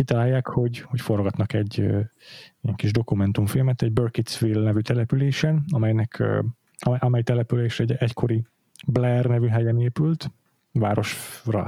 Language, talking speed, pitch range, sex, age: Hungarian, 110 wpm, 110-135 Hz, male, 30-49